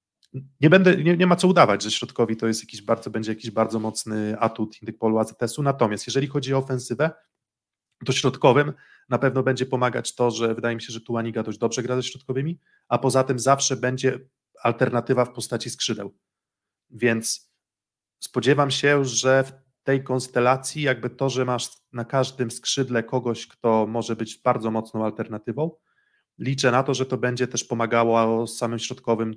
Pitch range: 115-130 Hz